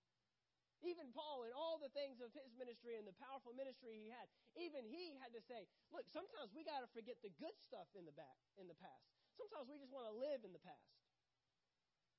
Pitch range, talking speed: 210-275 Hz, 215 wpm